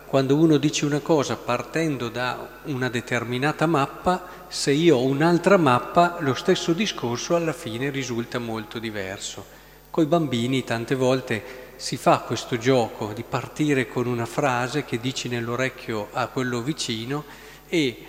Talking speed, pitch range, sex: 145 wpm, 125-165 Hz, male